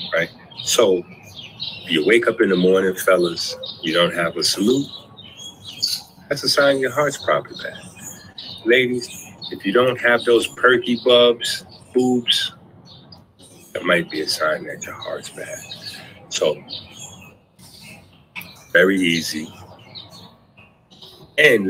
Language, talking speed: English, 120 wpm